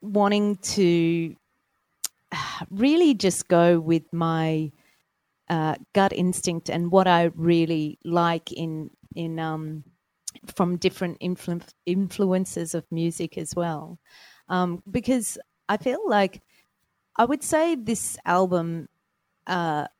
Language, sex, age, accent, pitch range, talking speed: English, female, 30-49, Australian, 165-200 Hz, 110 wpm